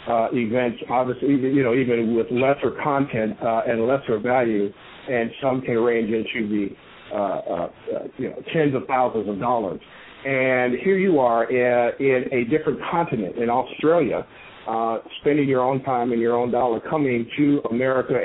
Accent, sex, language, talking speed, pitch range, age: American, male, English, 170 wpm, 120-145 Hz, 50-69